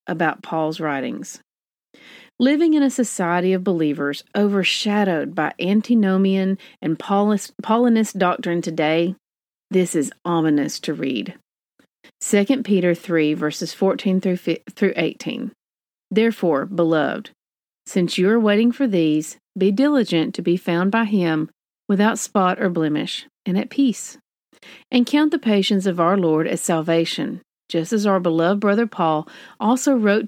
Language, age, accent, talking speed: English, 40-59, American, 130 wpm